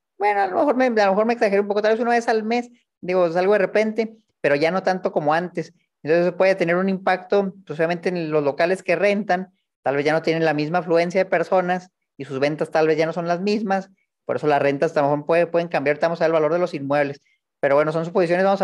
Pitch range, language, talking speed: 165-200 Hz, Spanish, 275 wpm